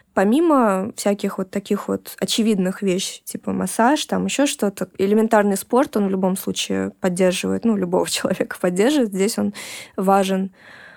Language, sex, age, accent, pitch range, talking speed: Russian, female, 20-39, native, 195-230 Hz, 140 wpm